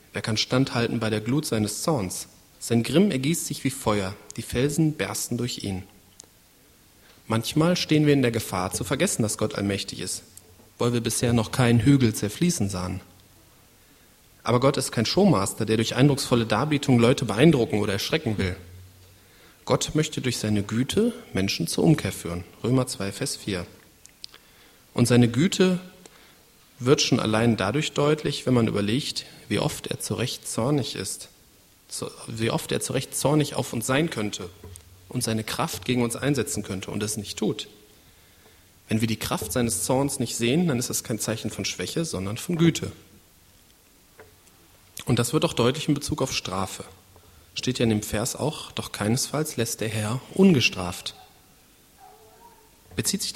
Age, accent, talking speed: 40-59, German, 165 wpm